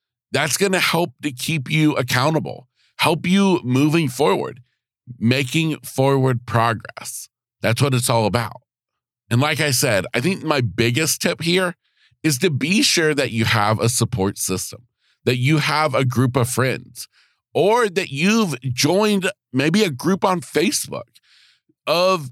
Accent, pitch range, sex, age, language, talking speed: American, 120-155 Hz, male, 40-59, English, 155 wpm